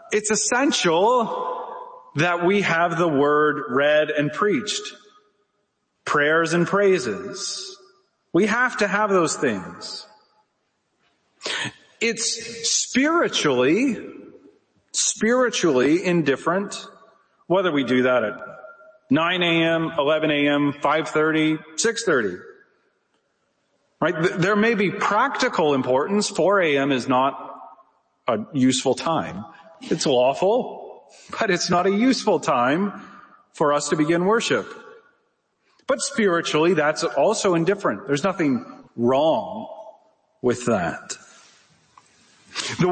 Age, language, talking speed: 40-59, English, 100 wpm